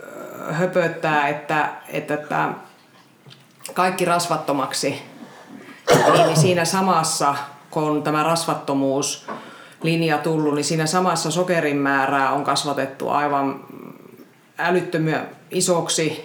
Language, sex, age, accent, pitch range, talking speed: Finnish, female, 30-49, native, 140-165 Hz, 90 wpm